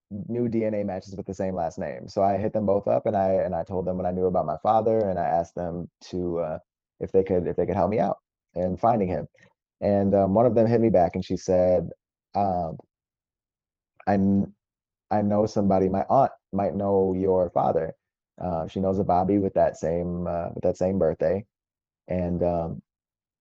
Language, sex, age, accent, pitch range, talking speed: English, male, 20-39, American, 90-105 Hz, 210 wpm